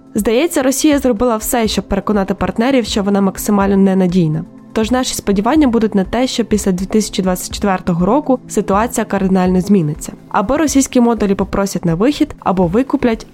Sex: female